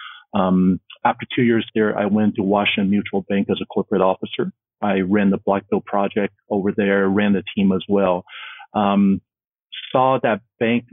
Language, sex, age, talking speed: English, male, 50-69, 170 wpm